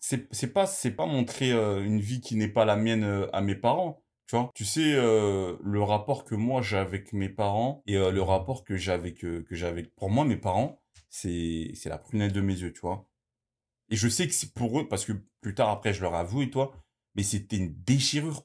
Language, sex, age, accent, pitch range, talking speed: French, male, 30-49, French, 95-125 Hz, 240 wpm